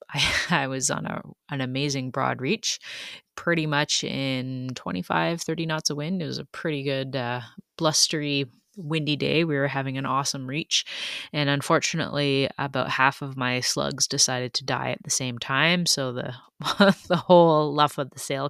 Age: 20-39